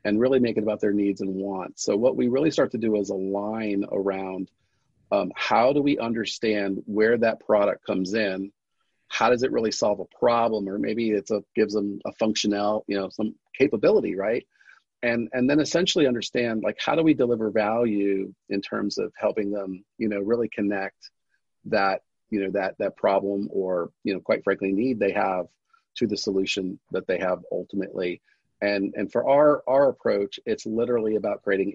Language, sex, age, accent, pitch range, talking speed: English, male, 40-59, American, 100-115 Hz, 190 wpm